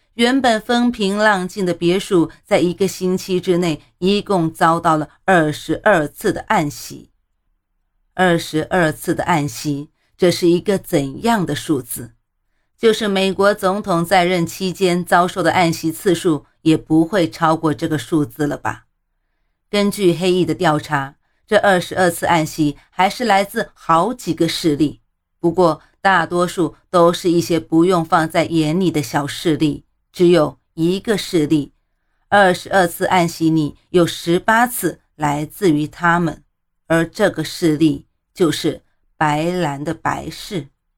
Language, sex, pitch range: Chinese, female, 155-185 Hz